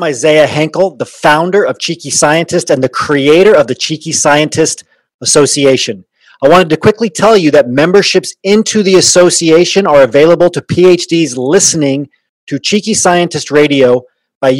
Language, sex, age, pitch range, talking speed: English, male, 30-49, 145-180 Hz, 150 wpm